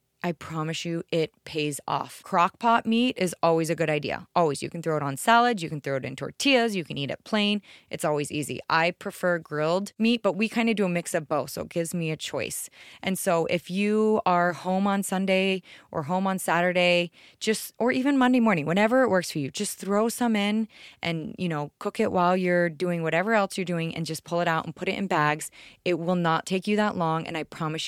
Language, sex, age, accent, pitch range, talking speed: English, female, 20-39, American, 160-200 Hz, 240 wpm